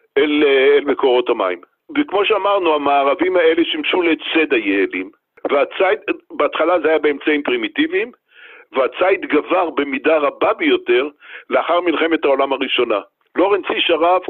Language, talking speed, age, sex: Hebrew, 120 wpm, 60-79, male